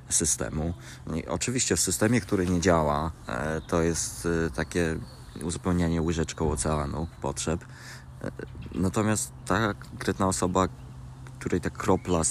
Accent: native